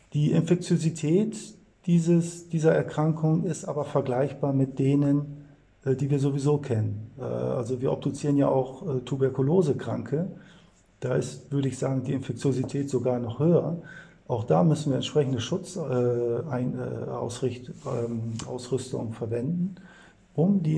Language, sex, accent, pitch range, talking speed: German, male, German, 120-145 Hz, 110 wpm